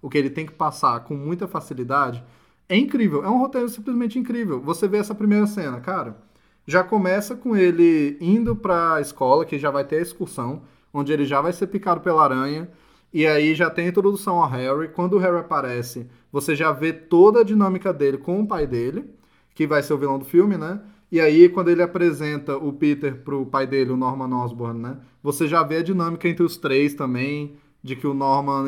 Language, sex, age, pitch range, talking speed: Portuguese, male, 20-39, 140-185 Hz, 210 wpm